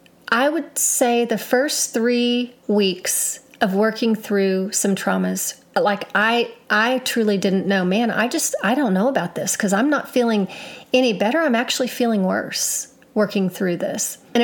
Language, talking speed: English, 165 wpm